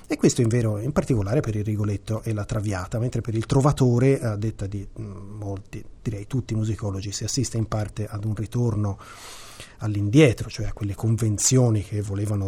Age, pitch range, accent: 30-49, 105-130 Hz, native